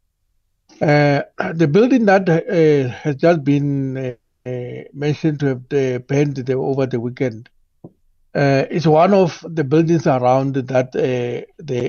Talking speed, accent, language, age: 120 wpm, South African, English, 60-79